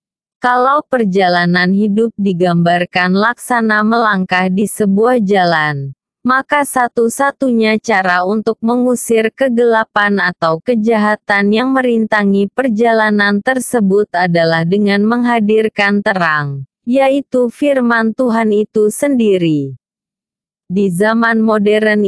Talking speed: 90 wpm